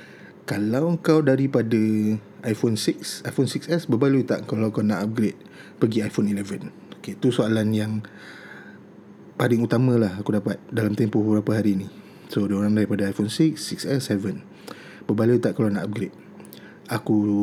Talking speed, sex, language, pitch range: 140 wpm, male, Malay, 105-145 Hz